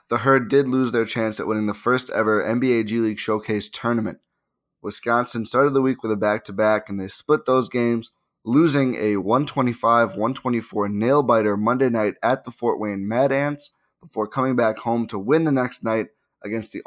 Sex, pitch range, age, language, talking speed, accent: male, 105-130 Hz, 20-39, English, 180 wpm, American